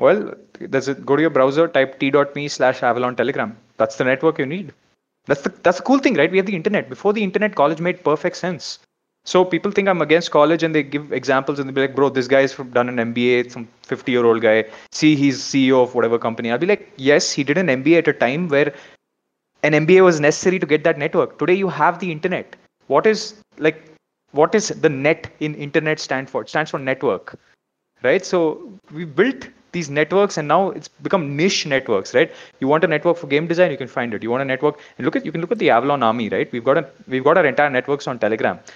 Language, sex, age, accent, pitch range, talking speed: English, male, 30-49, Indian, 135-180 Hz, 235 wpm